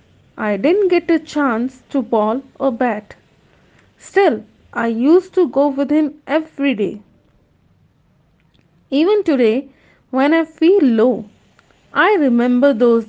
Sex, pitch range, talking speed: female, 240-310 Hz, 125 wpm